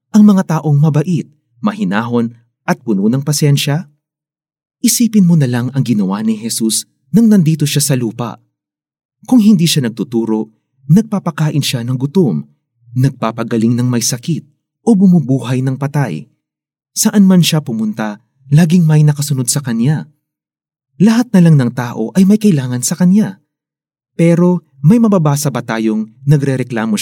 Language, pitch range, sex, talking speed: Filipino, 125-175 Hz, male, 140 wpm